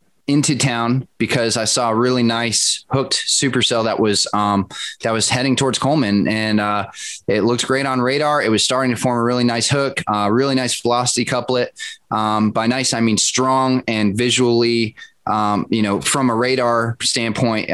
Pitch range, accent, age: 110-130 Hz, American, 20-39